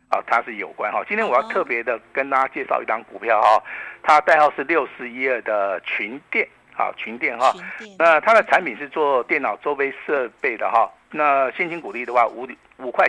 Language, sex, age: Chinese, male, 50-69